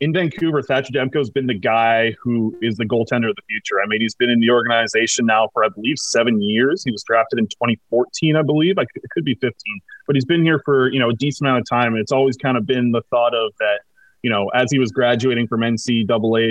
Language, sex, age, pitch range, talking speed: English, male, 30-49, 115-135 Hz, 260 wpm